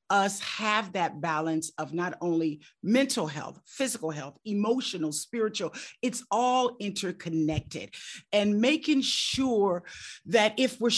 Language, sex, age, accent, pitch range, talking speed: English, female, 50-69, American, 160-225 Hz, 120 wpm